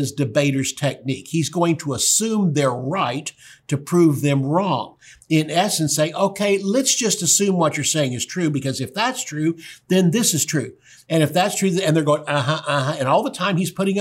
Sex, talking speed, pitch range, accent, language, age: male, 200 wpm, 135-180 Hz, American, English, 60-79